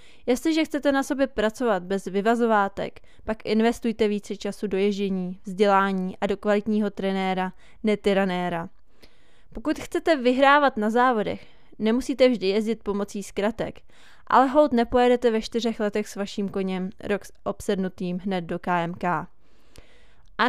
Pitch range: 195-235 Hz